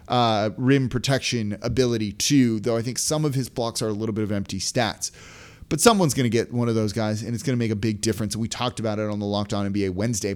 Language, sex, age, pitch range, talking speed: English, male, 30-49, 115-155 Hz, 265 wpm